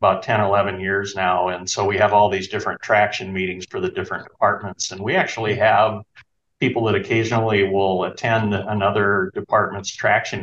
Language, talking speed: English, 175 wpm